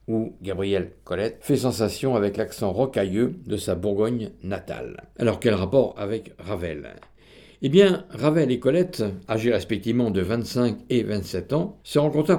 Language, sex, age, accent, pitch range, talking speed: French, male, 60-79, French, 105-135 Hz, 150 wpm